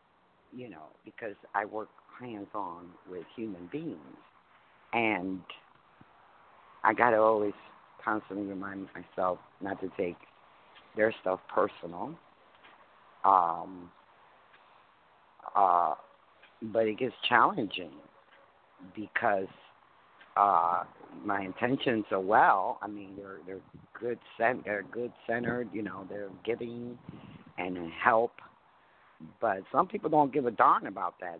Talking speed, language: 105 wpm, English